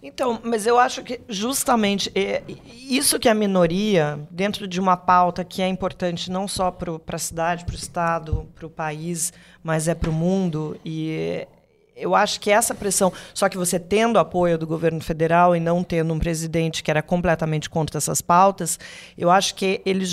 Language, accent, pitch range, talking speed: Portuguese, Brazilian, 170-220 Hz, 180 wpm